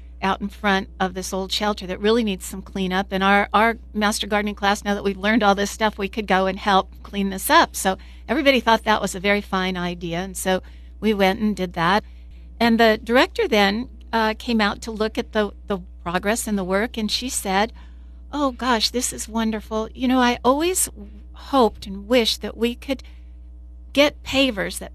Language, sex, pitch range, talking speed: English, female, 190-225 Hz, 205 wpm